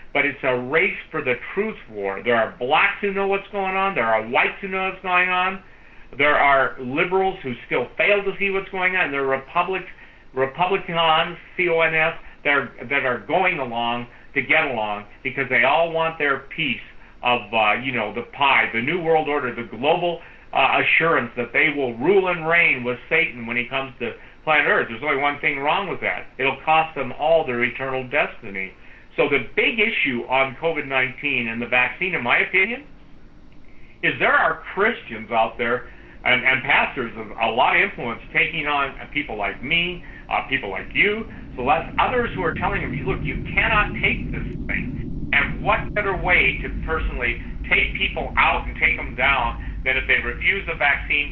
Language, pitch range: English, 125-180 Hz